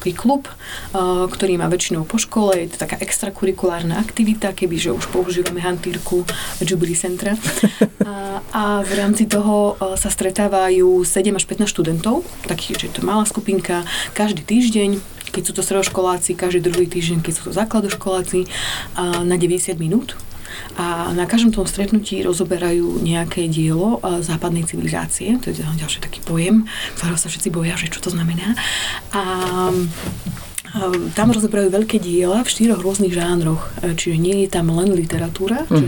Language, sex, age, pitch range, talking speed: Slovak, female, 30-49, 170-200 Hz, 145 wpm